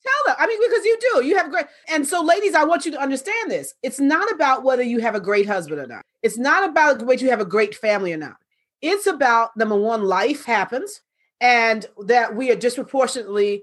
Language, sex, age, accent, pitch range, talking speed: English, female, 40-59, American, 210-280 Hz, 230 wpm